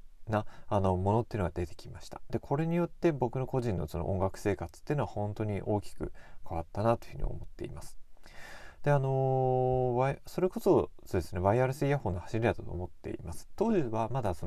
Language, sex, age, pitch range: Japanese, male, 30-49, 95-135 Hz